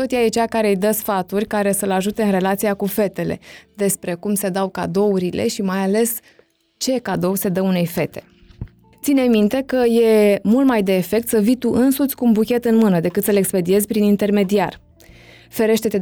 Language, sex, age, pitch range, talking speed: Romanian, female, 20-39, 185-230 Hz, 200 wpm